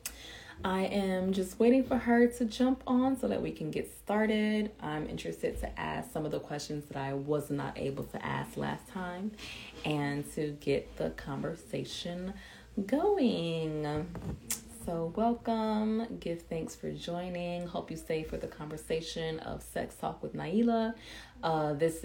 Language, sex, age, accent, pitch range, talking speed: English, female, 20-39, American, 140-205 Hz, 155 wpm